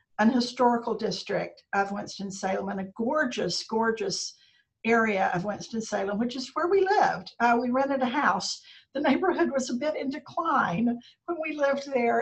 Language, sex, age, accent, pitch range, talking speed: English, female, 60-79, American, 215-260 Hz, 160 wpm